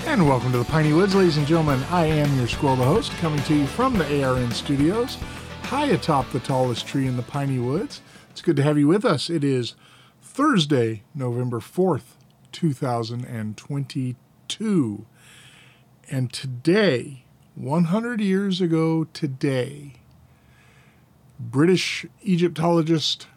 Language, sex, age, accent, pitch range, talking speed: English, male, 50-69, American, 120-155 Hz, 135 wpm